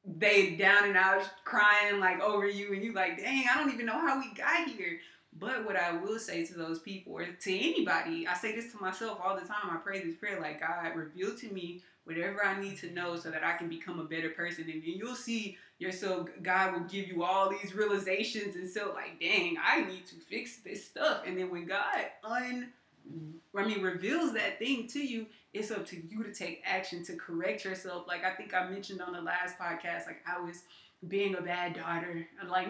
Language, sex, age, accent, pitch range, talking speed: English, female, 20-39, American, 175-205 Hz, 220 wpm